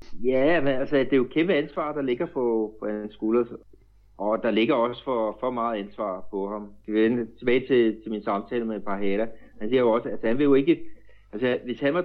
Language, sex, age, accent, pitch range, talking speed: Danish, male, 30-49, native, 100-120 Hz, 220 wpm